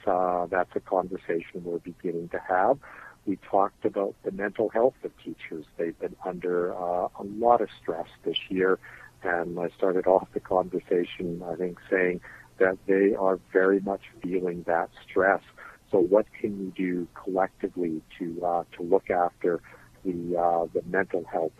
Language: English